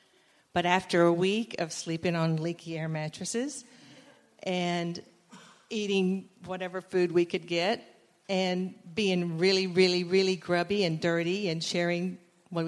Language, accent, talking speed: English, American, 135 wpm